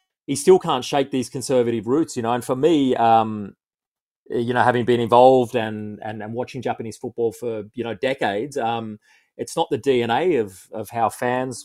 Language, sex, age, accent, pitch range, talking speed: English, male, 30-49, Australian, 115-130 Hz, 190 wpm